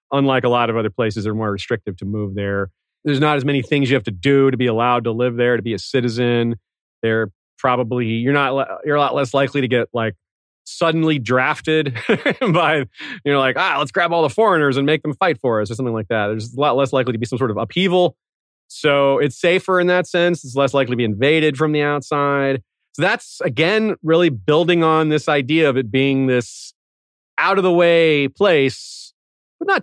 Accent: American